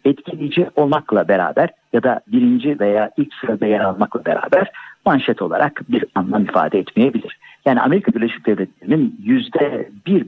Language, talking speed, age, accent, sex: Turkish, 135 wpm, 50-69, native, male